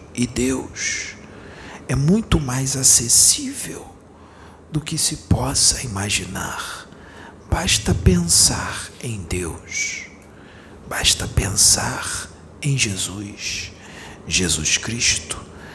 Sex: male